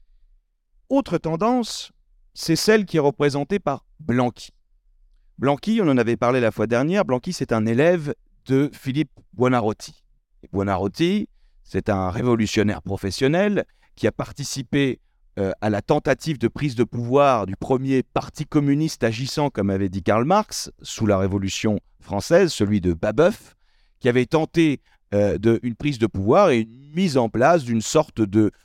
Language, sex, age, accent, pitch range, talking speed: French, male, 40-59, French, 105-155 Hz, 155 wpm